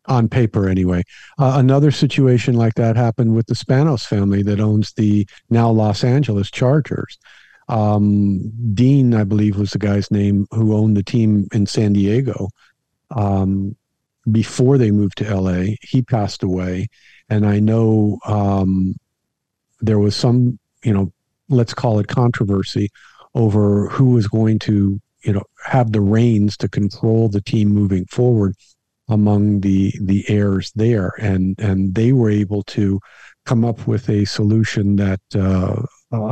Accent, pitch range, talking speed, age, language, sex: American, 100-120 Hz, 150 wpm, 50-69, English, male